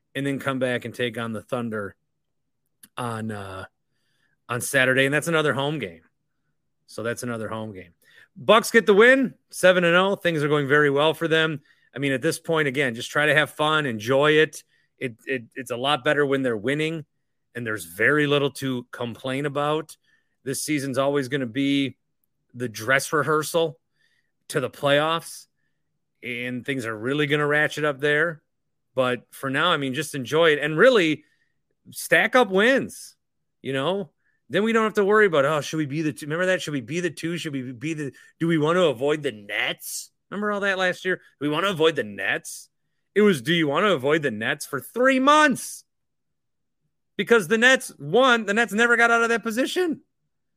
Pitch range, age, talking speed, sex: 130-175 Hz, 30-49, 200 wpm, male